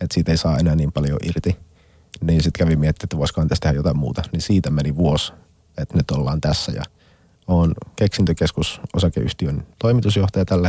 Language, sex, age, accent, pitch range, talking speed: Finnish, male, 30-49, native, 80-95 Hz, 165 wpm